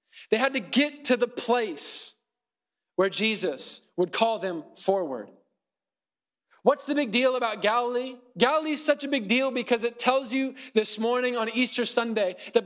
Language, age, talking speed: English, 20-39, 165 wpm